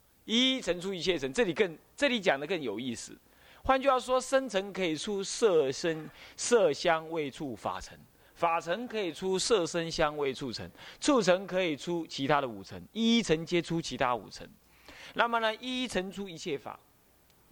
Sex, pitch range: male, 135-195 Hz